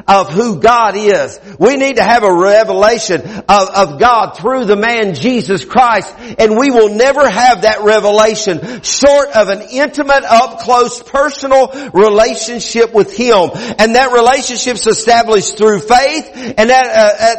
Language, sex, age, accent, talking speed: English, male, 50-69, American, 150 wpm